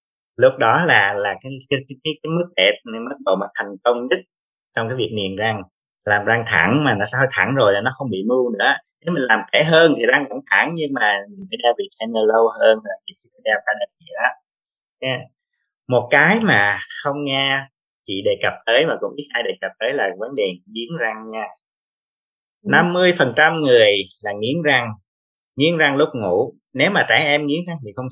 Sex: male